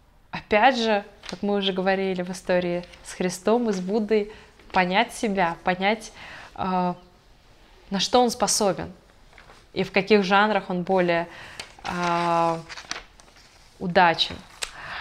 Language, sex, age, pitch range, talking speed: Russian, female, 20-39, 185-215 Hz, 115 wpm